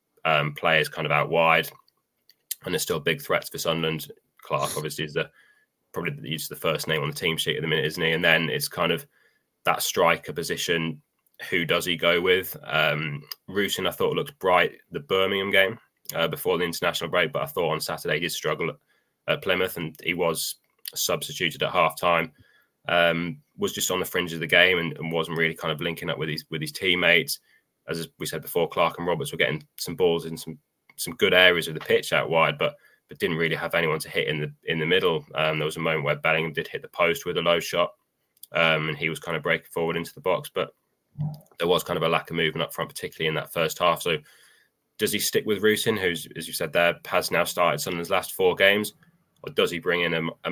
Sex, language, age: male, English, 20-39